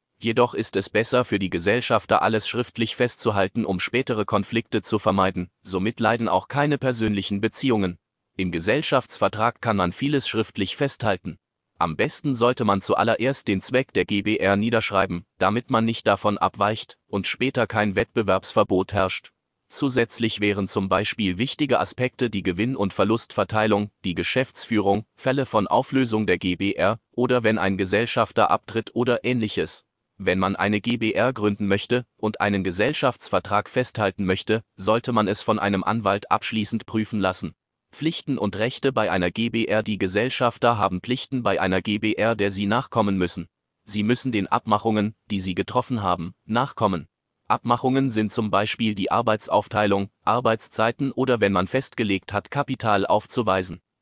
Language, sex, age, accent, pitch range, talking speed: German, male, 30-49, German, 100-120 Hz, 145 wpm